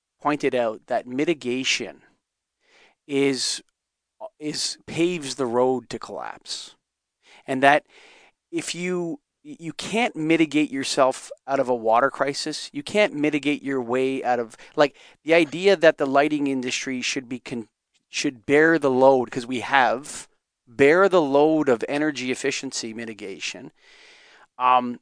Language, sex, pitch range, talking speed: English, male, 130-165 Hz, 130 wpm